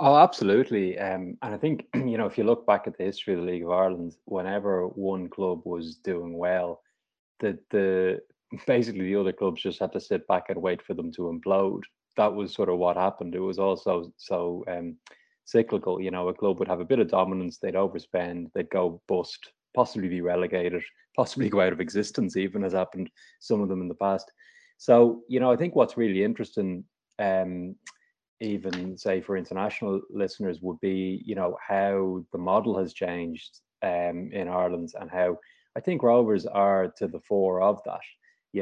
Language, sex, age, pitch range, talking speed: English, male, 20-39, 90-100 Hz, 195 wpm